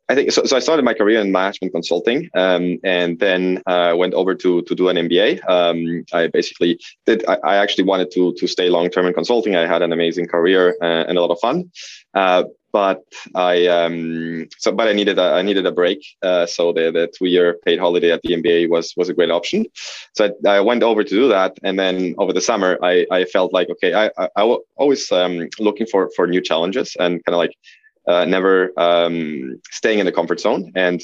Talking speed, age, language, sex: 230 wpm, 20-39, English, male